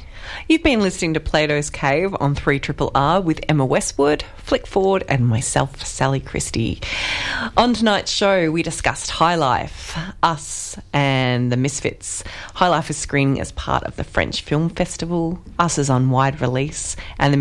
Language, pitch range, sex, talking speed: English, 130-165 Hz, female, 160 wpm